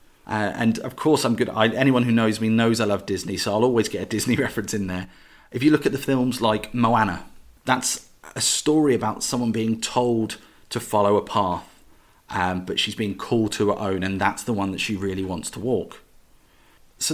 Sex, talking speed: male, 215 wpm